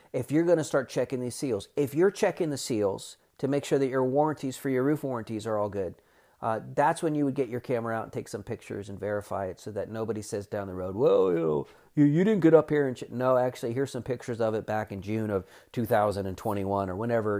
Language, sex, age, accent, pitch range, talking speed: English, male, 40-59, American, 110-140 Hz, 255 wpm